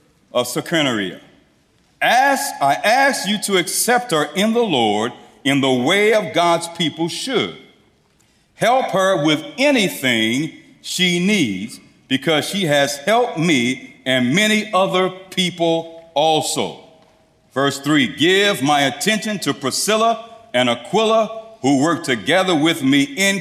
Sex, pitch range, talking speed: male, 145-225 Hz, 120 wpm